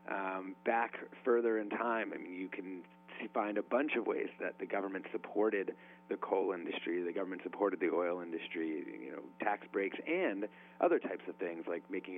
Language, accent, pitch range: English, American, 85-115 Hz